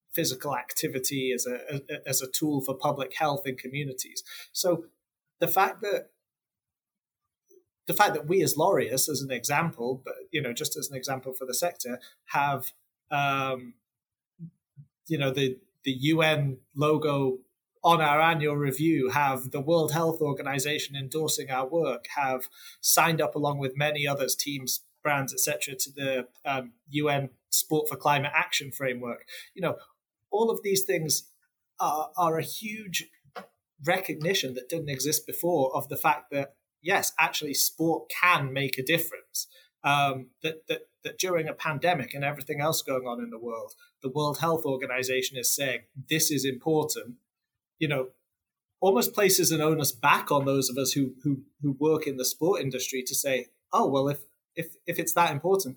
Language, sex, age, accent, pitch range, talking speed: English, male, 30-49, British, 135-160 Hz, 165 wpm